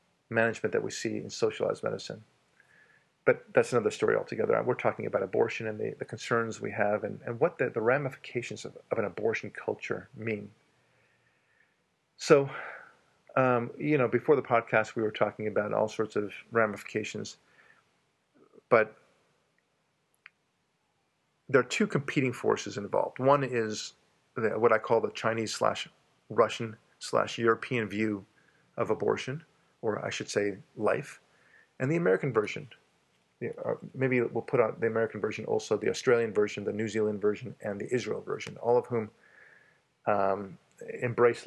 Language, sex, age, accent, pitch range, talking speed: English, male, 40-59, American, 110-150 Hz, 150 wpm